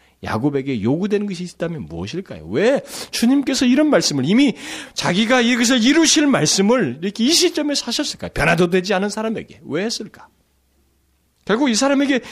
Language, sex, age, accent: Korean, male, 40-59, native